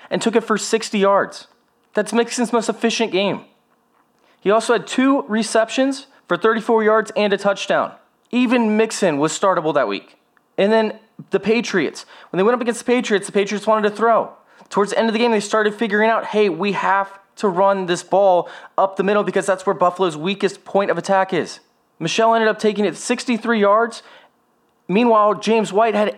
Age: 20-39